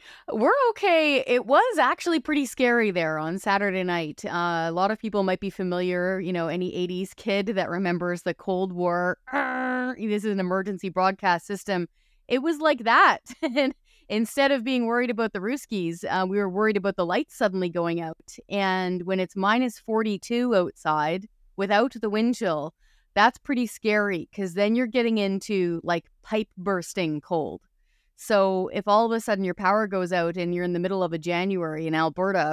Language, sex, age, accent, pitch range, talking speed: English, female, 30-49, American, 180-225 Hz, 185 wpm